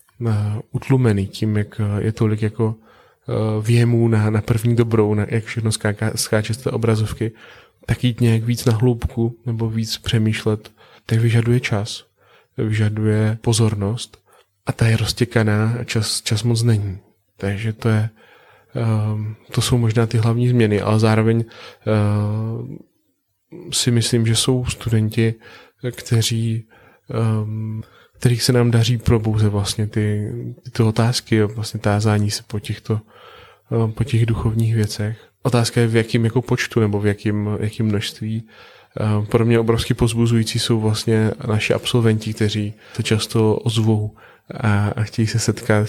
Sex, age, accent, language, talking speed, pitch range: male, 20-39, native, Czech, 135 wpm, 110-115 Hz